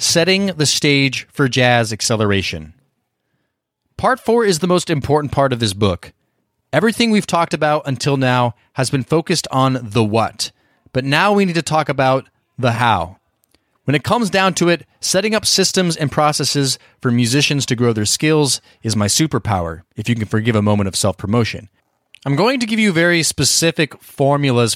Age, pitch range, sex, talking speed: 30-49, 120-155 Hz, male, 175 wpm